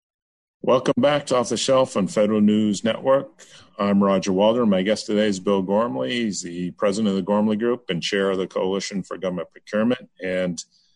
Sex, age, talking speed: male, 40-59, 190 wpm